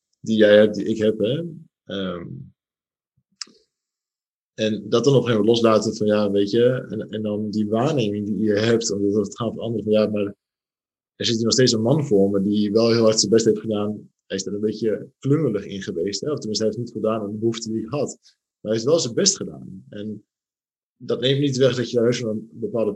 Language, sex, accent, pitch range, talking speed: Dutch, male, Dutch, 105-135 Hz, 240 wpm